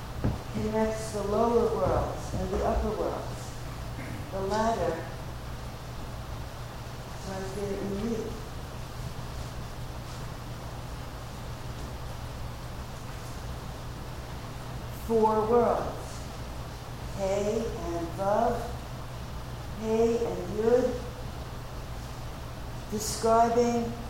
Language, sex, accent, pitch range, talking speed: English, female, American, 170-235 Hz, 55 wpm